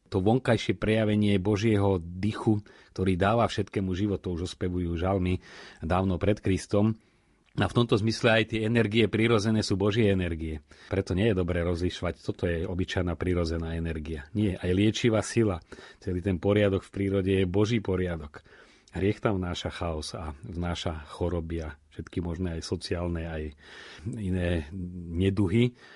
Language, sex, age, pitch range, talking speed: Slovak, male, 40-59, 85-100 Hz, 145 wpm